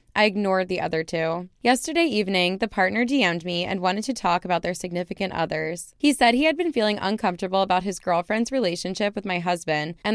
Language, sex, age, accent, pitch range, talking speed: English, female, 20-39, American, 175-220 Hz, 200 wpm